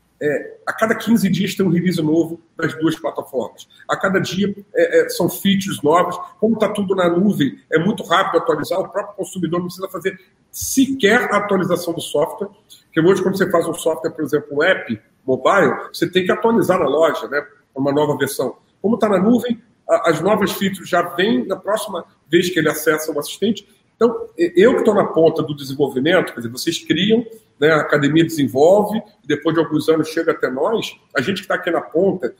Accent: Brazilian